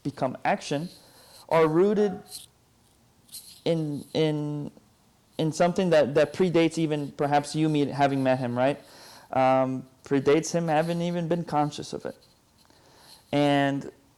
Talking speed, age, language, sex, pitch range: 125 wpm, 30-49, English, male, 140-185 Hz